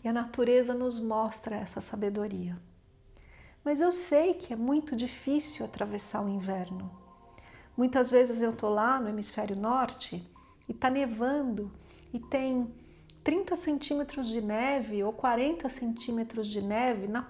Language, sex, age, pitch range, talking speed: Portuguese, female, 50-69, 210-275 Hz, 140 wpm